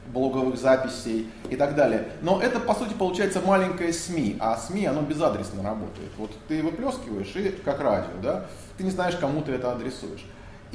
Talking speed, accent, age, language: 175 wpm, native, 20-39, Russian